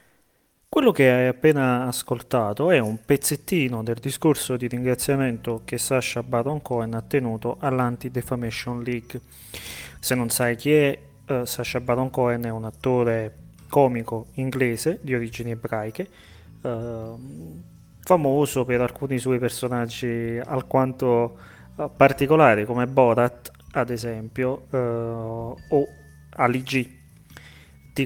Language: Italian